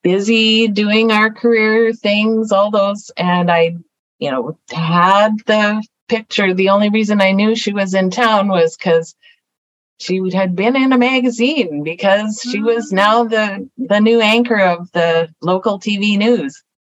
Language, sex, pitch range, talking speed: English, female, 165-215 Hz, 155 wpm